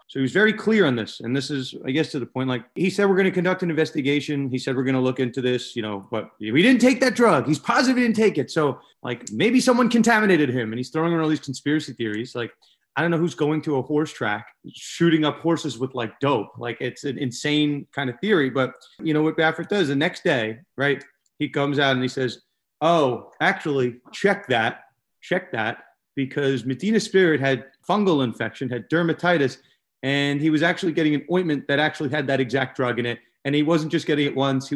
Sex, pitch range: male, 130-170 Hz